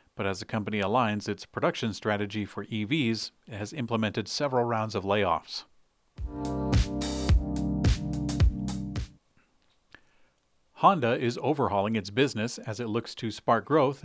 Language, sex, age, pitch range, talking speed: English, male, 40-59, 105-125 Hz, 120 wpm